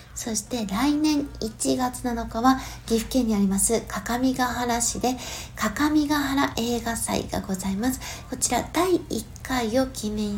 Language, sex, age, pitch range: Japanese, female, 60-79, 205-280 Hz